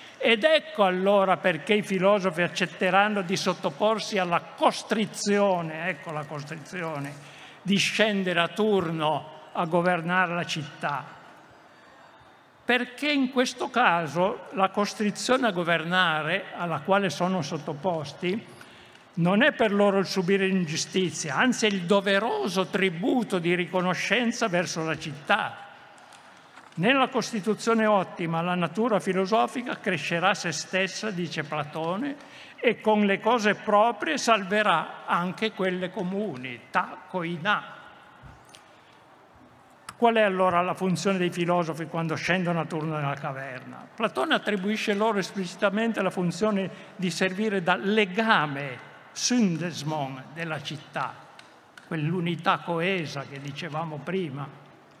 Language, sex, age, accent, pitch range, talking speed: Italian, male, 60-79, native, 165-210 Hz, 110 wpm